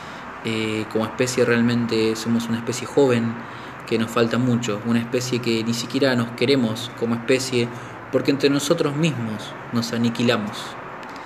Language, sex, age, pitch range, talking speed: Spanish, male, 20-39, 115-130 Hz, 145 wpm